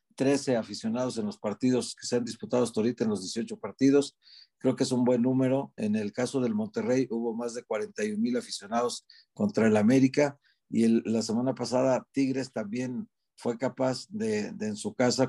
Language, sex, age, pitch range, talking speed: Spanish, male, 50-69, 120-180 Hz, 190 wpm